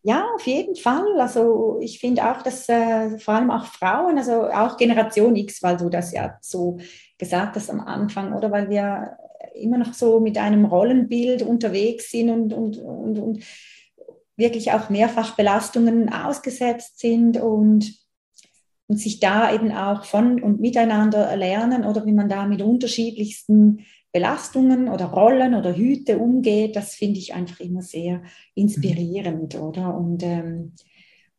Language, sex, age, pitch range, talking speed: German, female, 30-49, 195-235 Hz, 155 wpm